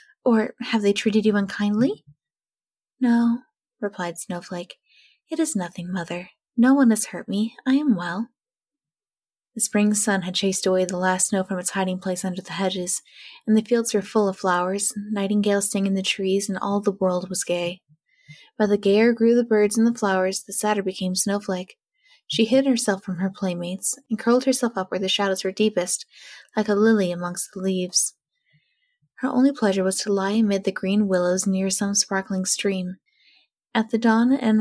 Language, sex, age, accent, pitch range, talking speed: English, female, 10-29, American, 185-225 Hz, 185 wpm